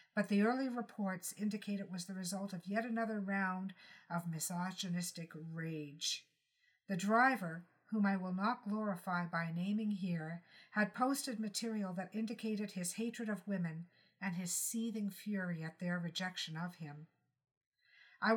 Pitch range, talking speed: 180-215 Hz, 145 wpm